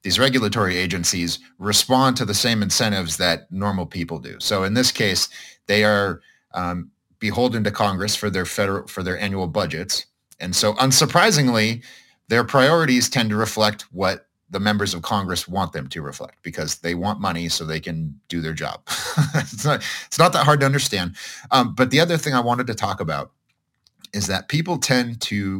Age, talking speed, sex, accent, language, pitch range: 30-49, 185 wpm, male, American, English, 90-125 Hz